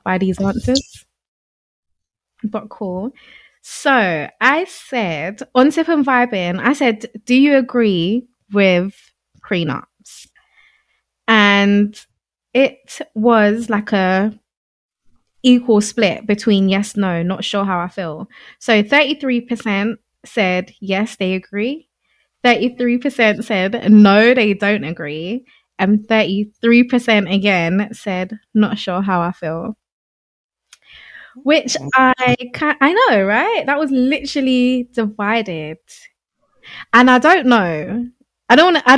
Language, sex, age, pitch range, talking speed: English, female, 20-39, 195-250 Hz, 110 wpm